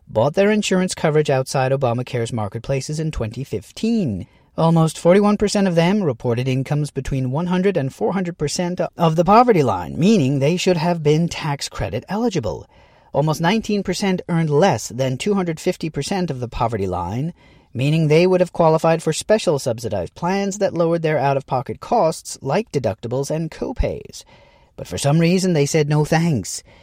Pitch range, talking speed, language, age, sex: 125-175 Hz, 155 wpm, English, 40-59, male